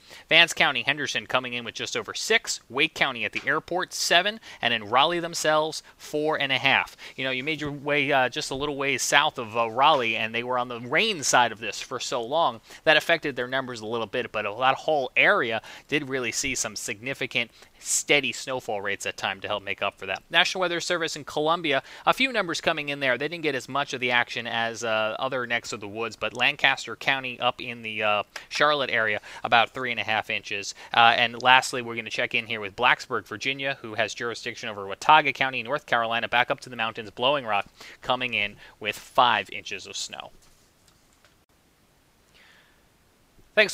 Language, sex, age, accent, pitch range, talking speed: English, male, 30-49, American, 115-150 Hz, 215 wpm